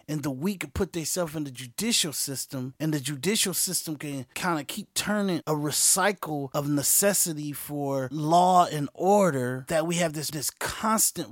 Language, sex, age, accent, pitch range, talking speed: English, male, 30-49, American, 140-180 Hz, 170 wpm